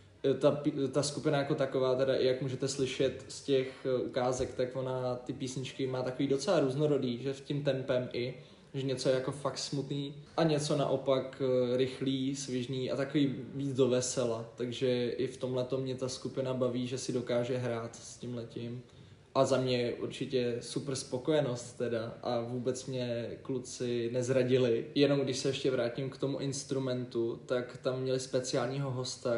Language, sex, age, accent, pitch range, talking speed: Czech, male, 20-39, native, 120-135 Hz, 170 wpm